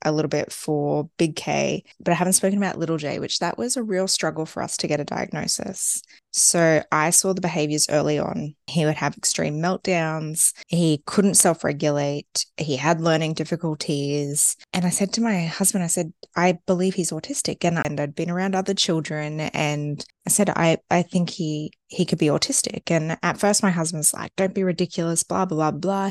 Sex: female